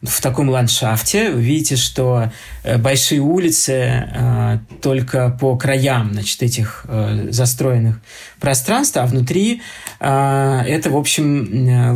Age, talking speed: 20-39, 115 wpm